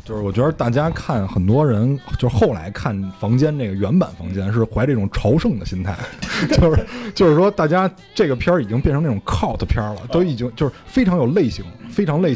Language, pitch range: Chinese, 105-155 Hz